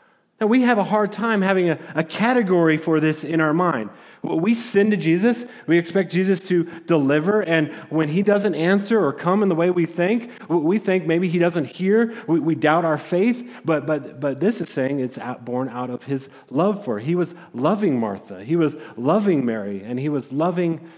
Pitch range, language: 130-180 Hz, English